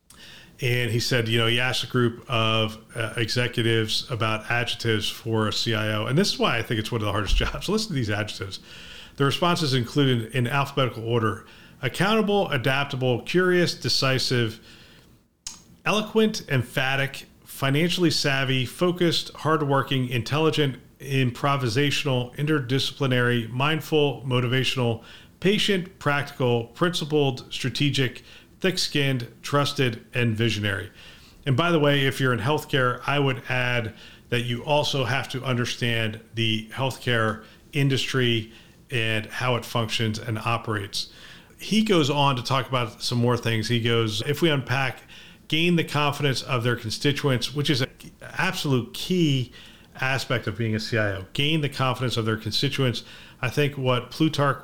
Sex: male